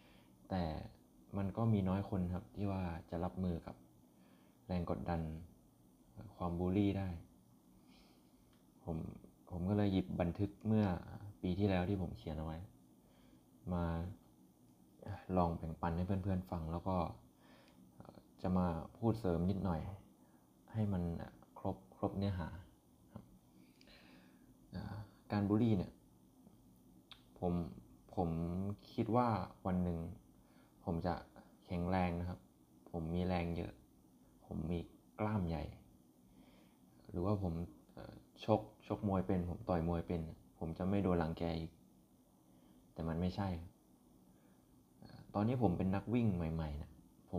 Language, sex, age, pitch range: Thai, male, 20-39, 80-100 Hz